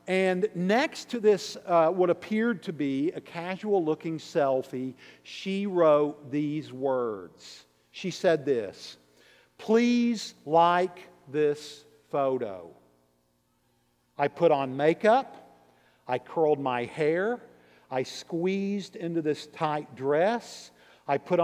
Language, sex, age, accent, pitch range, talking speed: English, male, 50-69, American, 115-175 Hz, 110 wpm